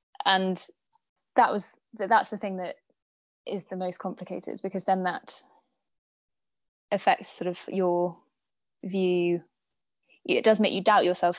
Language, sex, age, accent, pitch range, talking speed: English, female, 20-39, British, 180-205 Hz, 130 wpm